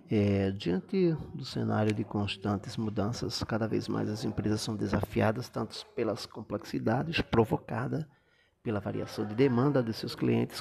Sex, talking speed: male, 135 wpm